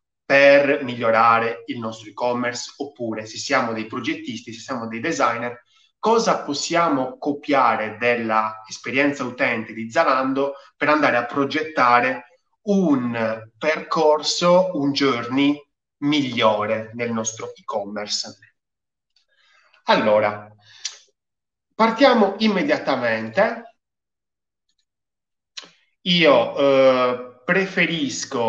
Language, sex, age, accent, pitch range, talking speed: Italian, male, 30-49, native, 115-170 Hz, 80 wpm